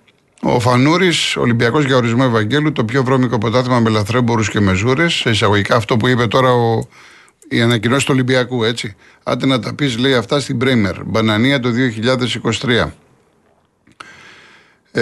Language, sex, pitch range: Greek, male, 110-135 Hz